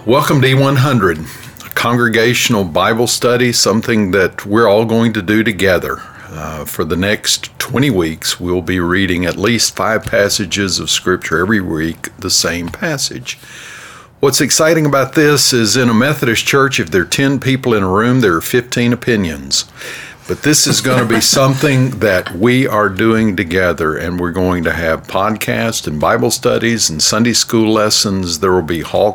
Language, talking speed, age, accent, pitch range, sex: English, 175 wpm, 50-69, American, 90-120 Hz, male